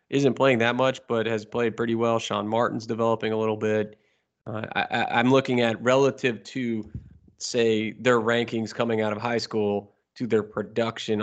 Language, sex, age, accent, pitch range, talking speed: English, male, 20-39, American, 105-120 Hz, 175 wpm